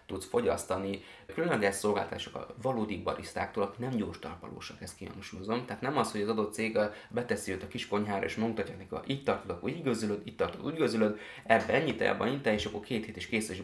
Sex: male